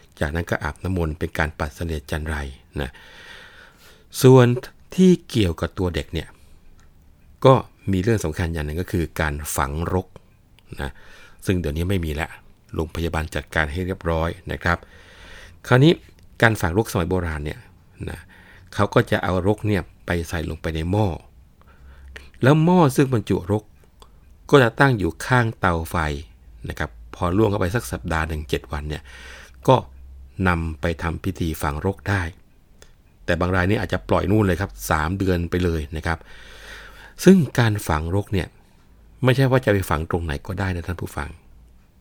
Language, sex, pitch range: Thai, male, 80-100 Hz